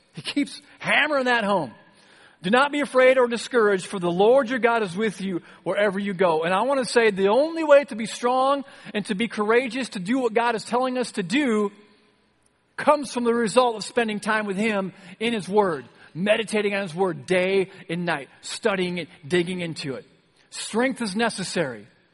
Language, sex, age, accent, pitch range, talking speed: English, male, 40-59, American, 170-230 Hz, 200 wpm